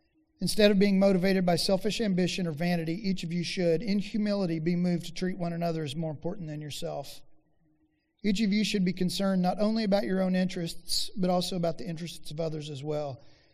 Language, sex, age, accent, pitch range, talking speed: English, male, 40-59, American, 165-205 Hz, 210 wpm